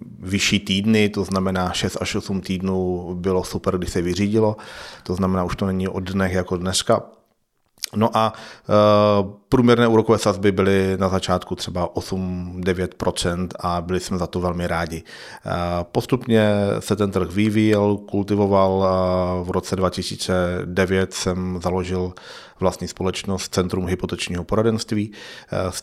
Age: 30-49